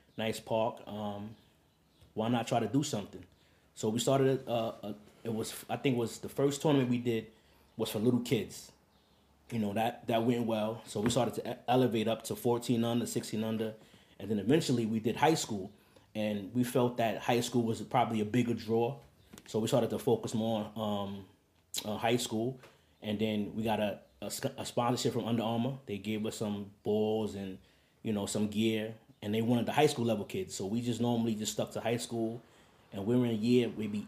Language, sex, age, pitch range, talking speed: English, male, 20-39, 105-120 Hz, 205 wpm